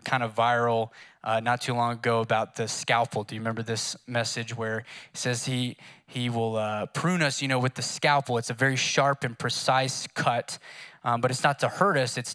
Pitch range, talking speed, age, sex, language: 115-140 Hz, 220 wpm, 20-39, male, English